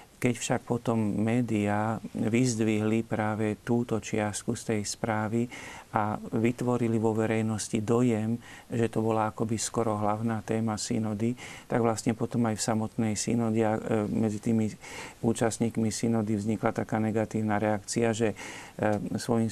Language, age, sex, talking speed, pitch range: Slovak, 40-59, male, 125 wpm, 110-115 Hz